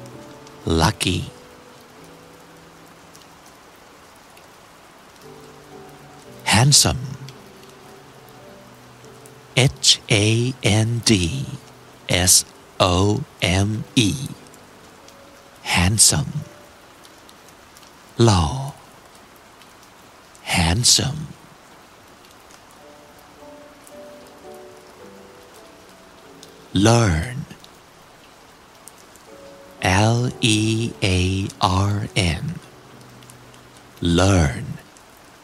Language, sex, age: Thai, male, 60-79